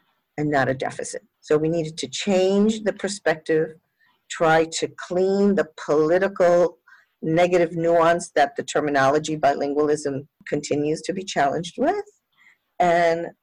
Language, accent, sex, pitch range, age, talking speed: English, American, female, 155-200 Hz, 50-69, 125 wpm